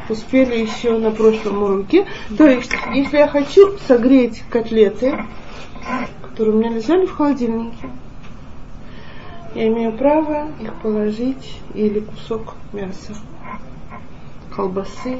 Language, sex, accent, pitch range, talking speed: Russian, female, native, 220-280 Hz, 105 wpm